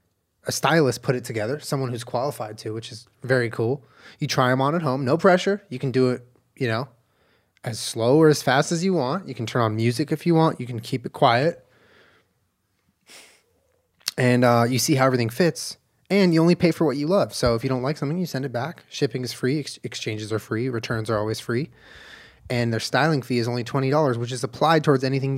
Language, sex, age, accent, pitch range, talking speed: English, male, 20-39, American, 120-160 Hz, 225 wpm